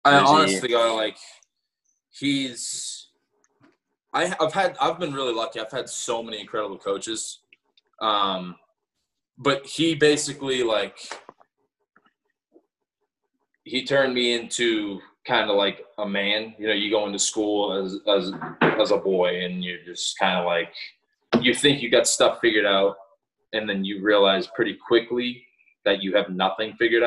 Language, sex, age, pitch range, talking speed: English, male, 20-39, 100-125 Hz, 155 wpm